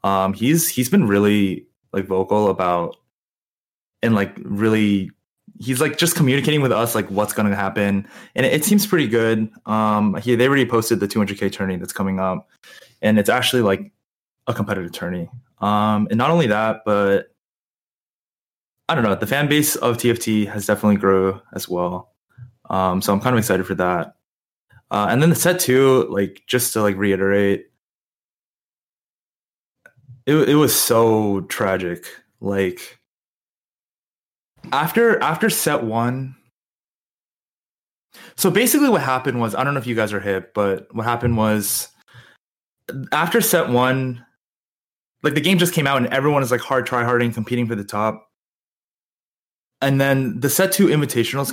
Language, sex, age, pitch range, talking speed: English, male, 20-39, 100-135 Hz, 160 wpm